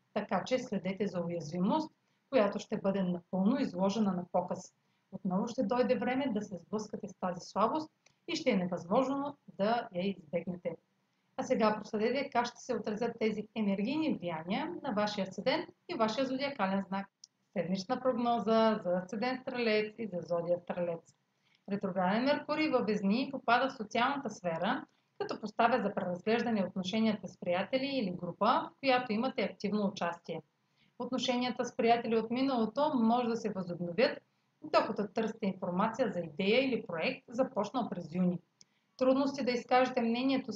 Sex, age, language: female, 40-59, Bulgarian